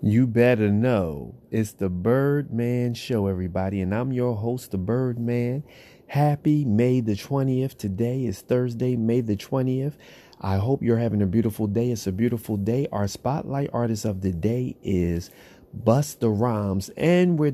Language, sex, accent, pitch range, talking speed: English, male, American, 95-120 Hz, 155 wpm